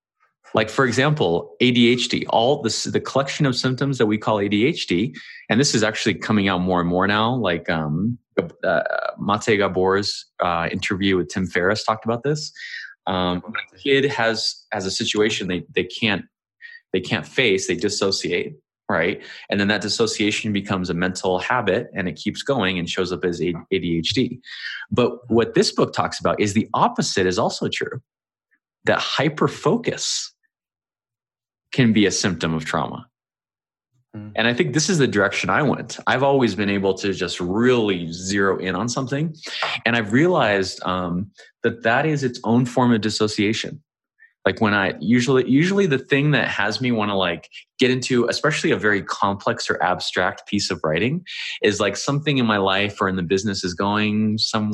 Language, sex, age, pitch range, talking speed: English, male, 20-39, 95-125 Hz, 175 wpm